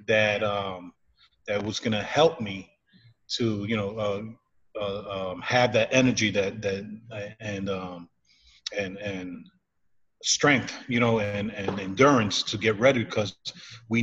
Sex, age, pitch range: male, 30-49, 100-120 Hz